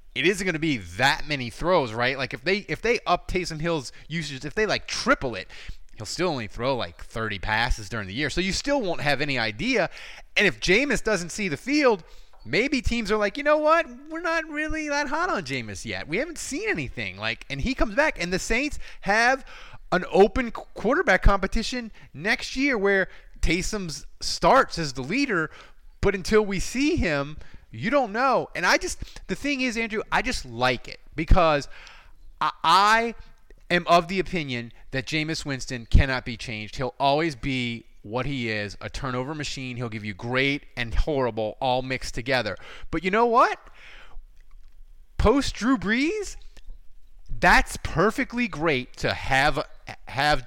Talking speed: 180 wpm